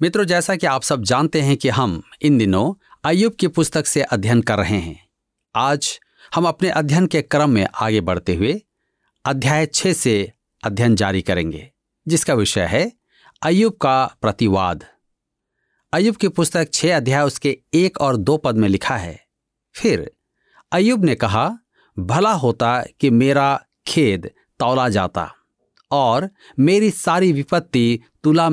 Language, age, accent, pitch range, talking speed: Hindi, 50-69, native, 110-170 Hz, 145 wpm